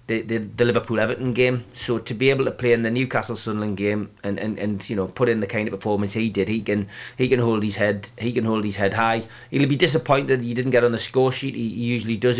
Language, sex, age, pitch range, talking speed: English, male, 30-49, 115-130 Hz, 280 wpm